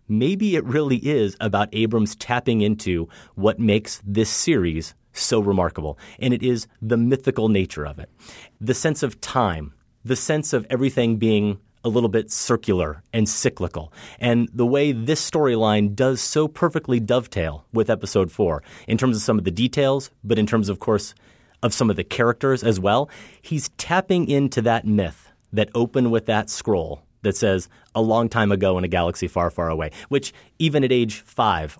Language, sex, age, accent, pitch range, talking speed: English, male, 30-49, American, 100-125 Hz, 180 wpm